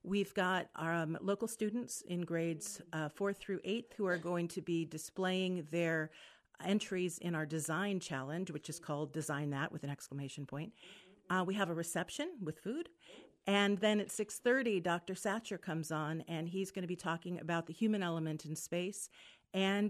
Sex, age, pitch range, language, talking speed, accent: female, 50-69, 160-200 Hz, English, 185 wpm, American